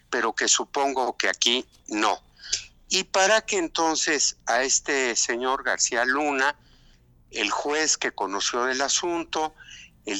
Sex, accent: male, Mexican